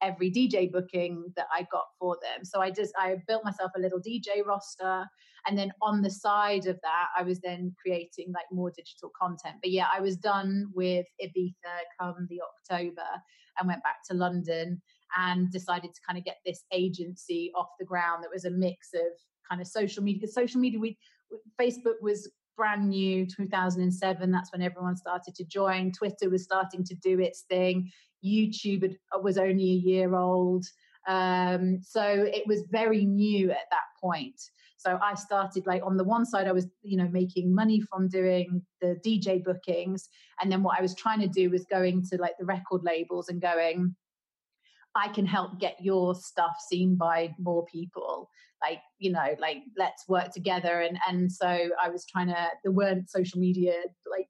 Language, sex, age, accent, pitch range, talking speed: English, female, 30-49, British, 175-195 Hz, 185 wpm